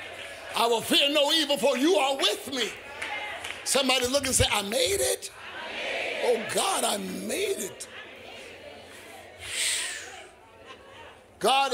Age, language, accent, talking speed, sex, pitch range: 50-69, English, American, 120 wpm, male, 285-415 Hz